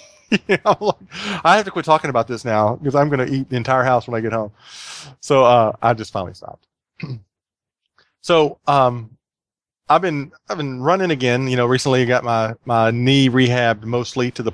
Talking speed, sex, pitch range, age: 200 wpm, male, 115-140 Hz, 30-49